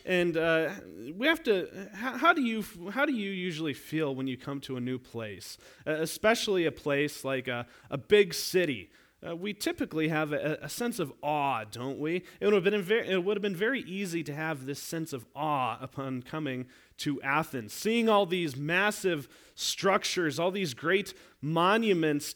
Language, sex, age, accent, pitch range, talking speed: English, male, 30-49, American, 145-190 Hz, 190 wpm